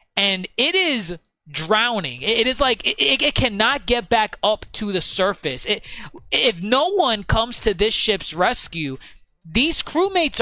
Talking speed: 155 wpm